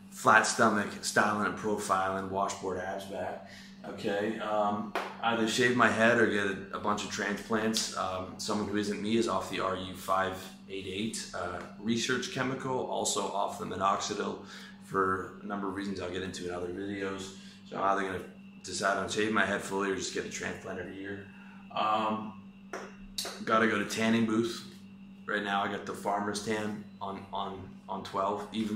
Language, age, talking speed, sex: English, 30-49, 170 wpm, male